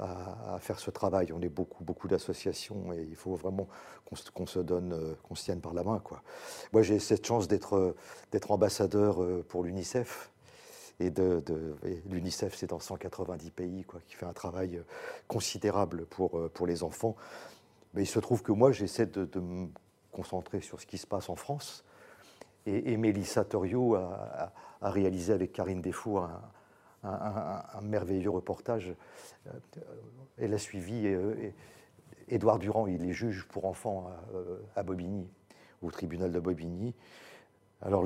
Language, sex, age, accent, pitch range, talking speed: French, male, 50-69, French, 90-105 Hz, 165 wpm